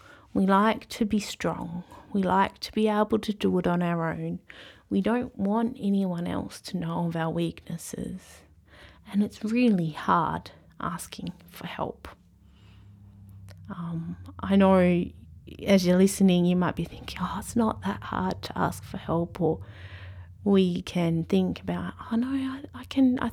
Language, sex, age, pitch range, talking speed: English, female, 20-39, 155-200 Hz, 160 wpm